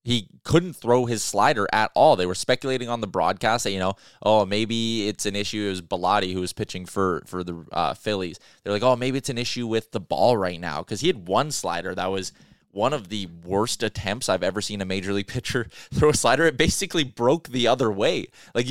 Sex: male